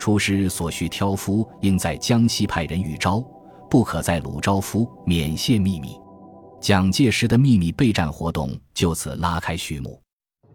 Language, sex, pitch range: Chinese, male, 90-115 Hz